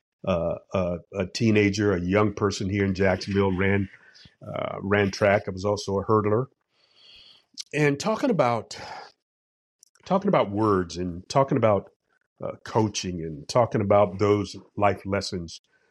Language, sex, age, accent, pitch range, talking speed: English, male, 50-69, American, 100-120 Hz, 135 wpm